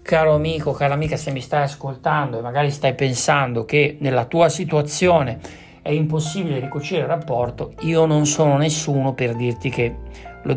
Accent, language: native, Italian